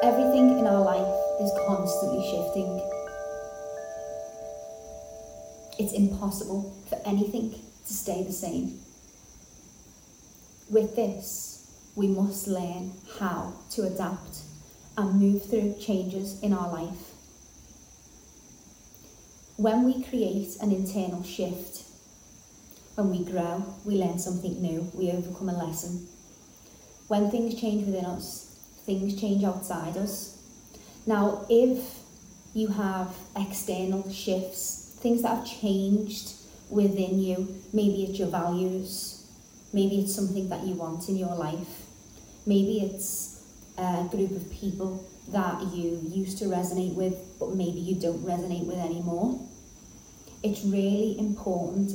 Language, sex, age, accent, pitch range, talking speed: English, female, 30-49, British, 180-205 Hz, 120 wpm